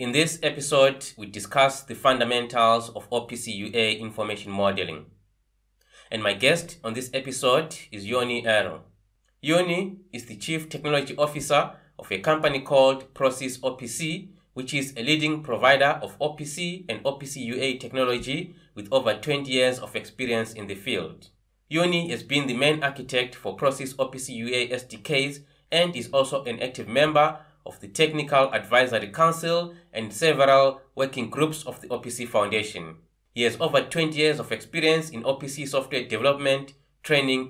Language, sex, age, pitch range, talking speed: English, male, 30-49, 120-155 Hz, 155 wpm